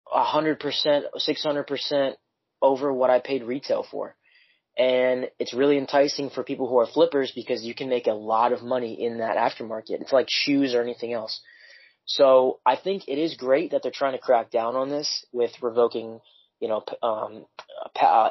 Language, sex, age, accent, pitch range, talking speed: English, male, 20-39, American, 115-135 Hz, 185 wpm